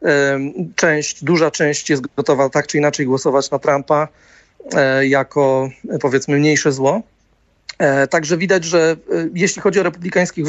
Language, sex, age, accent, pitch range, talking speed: Polish, male, 40-59, native, 140-170 Hz, 125 wpm